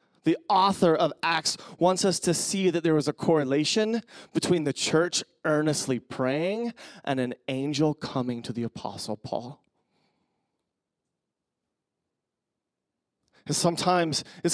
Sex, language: male, English